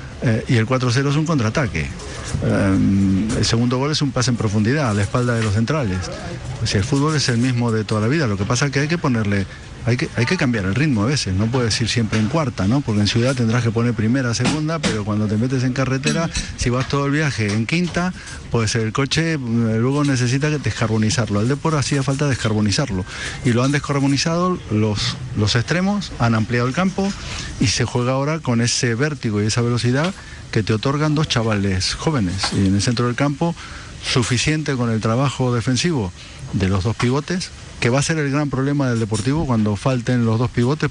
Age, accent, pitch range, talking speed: 50-69, Argentinian, 110-140 Hz, 210 wpm